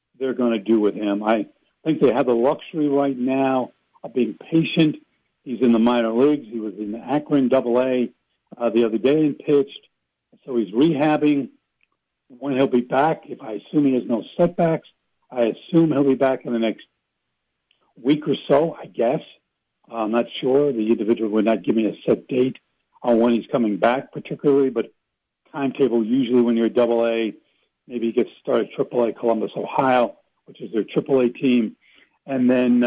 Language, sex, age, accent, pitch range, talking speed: English, male, 70-89, American, 120-165 Hz, 190 wpm